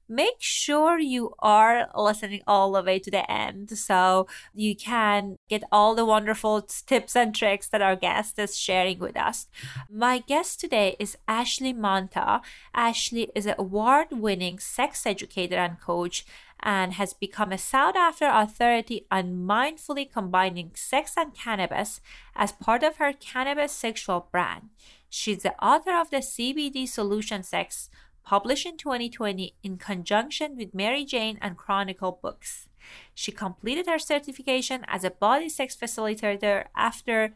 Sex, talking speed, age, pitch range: female, 145 wpm, 30-49, 195-260 Hz